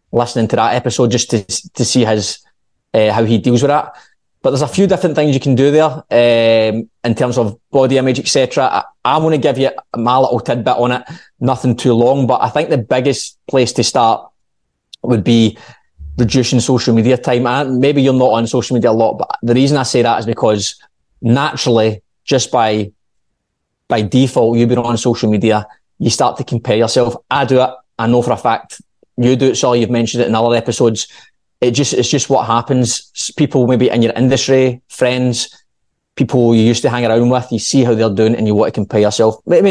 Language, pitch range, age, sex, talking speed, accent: English, 115-130 Hz, 20-39, male, 215 wpm, British